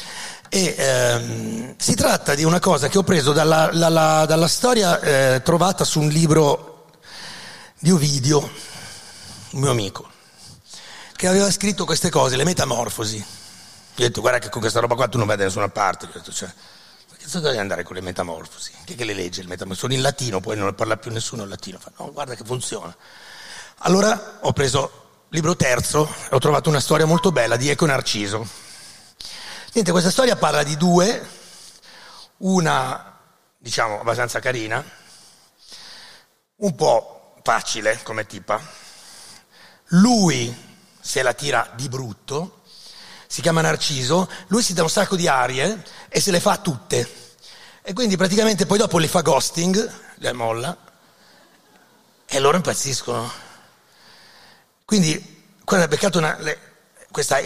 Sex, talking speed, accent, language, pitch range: male, 150 wpm, native, Italian, 115-180 Hz